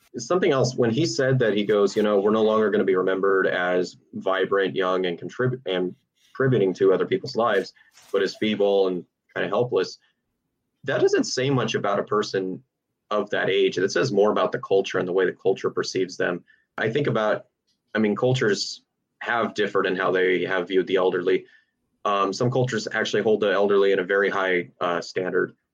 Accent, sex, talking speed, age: American, male, 200 wpm, 30-49